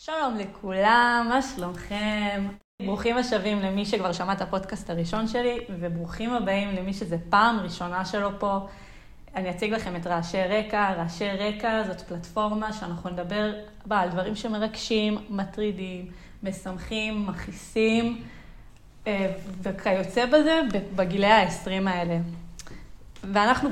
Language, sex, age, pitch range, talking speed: Hebrew, female, 20-39, 190-230 Hz, 115 wpm